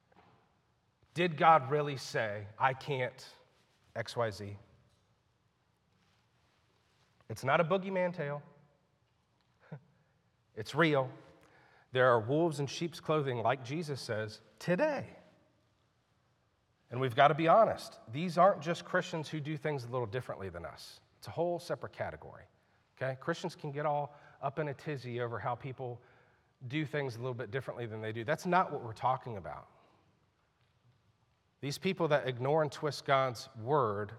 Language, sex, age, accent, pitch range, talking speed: English, male, 40-59, American, 120-155 Hz, 145 wpm